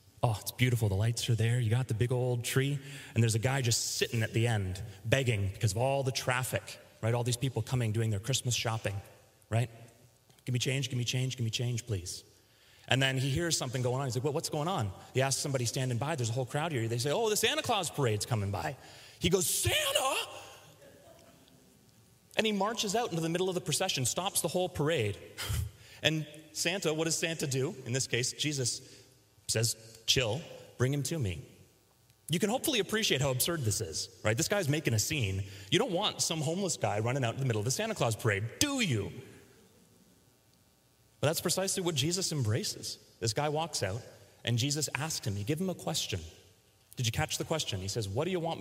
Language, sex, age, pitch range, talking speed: English, male, 30-49, 110-145 Hz, 220 wpm